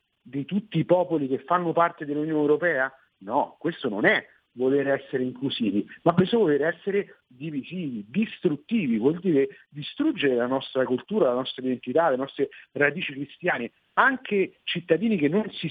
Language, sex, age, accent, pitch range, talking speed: Italian, male, 50-69, native, 135-195 Hz, 155 wpm